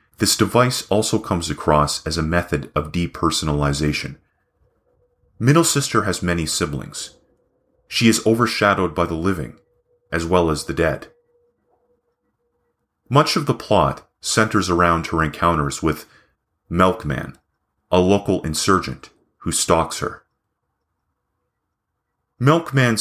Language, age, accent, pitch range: English, 30-49, American, 80-110 Hz